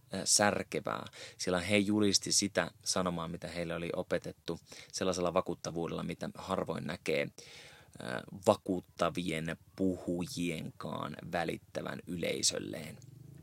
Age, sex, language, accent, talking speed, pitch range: 20-39, male, Finnish, native, 85 wpm, 85-100 Hz